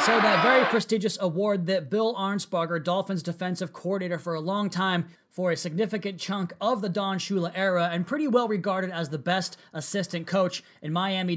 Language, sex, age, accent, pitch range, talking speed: English, male, 30-49, American, 165-195 Hz, 185 wpm